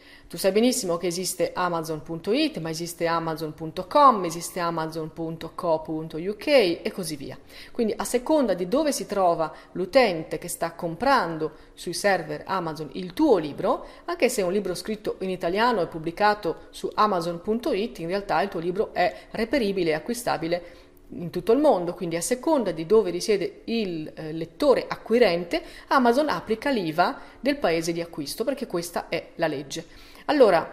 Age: 40-59